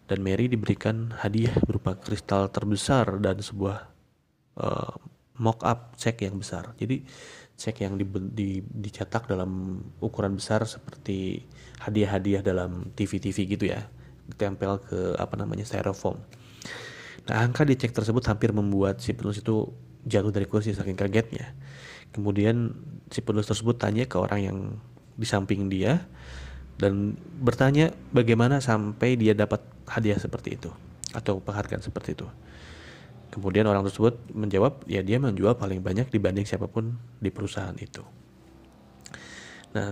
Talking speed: 135 wpm